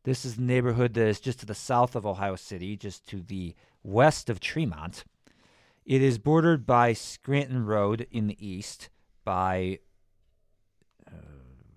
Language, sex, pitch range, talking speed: English, male, 90-110 Hz, 155 wpm